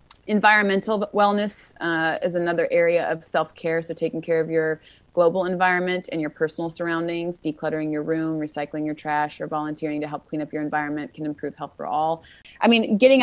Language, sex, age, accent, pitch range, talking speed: English, female, 30-49, American, 150-180 Hz, 185 wpm